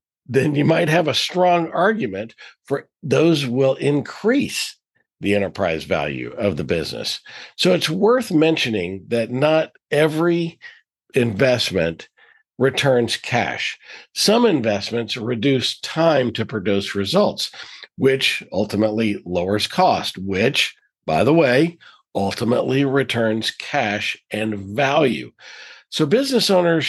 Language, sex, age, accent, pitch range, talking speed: English, male, 50-69, American, 110-155 Hz, 110 wpm